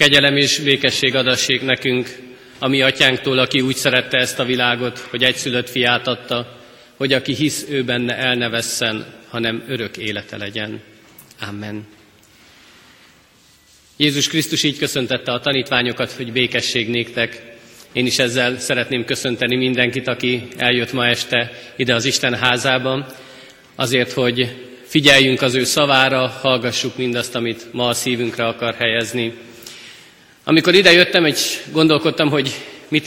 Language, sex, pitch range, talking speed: Hungarian, male, 120-140 Hz, 130 wpm